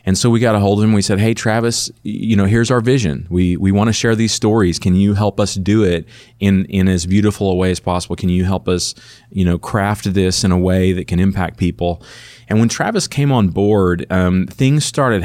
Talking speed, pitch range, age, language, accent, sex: 245 wpm, 90-105 Hz, 30-49, English, American, male